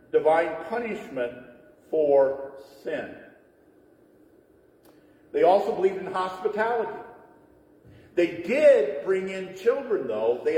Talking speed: 90 wpm